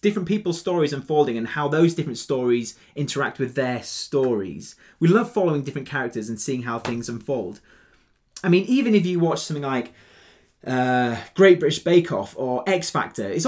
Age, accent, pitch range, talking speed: 30-49, British, 130-175 Hz, 180 wpm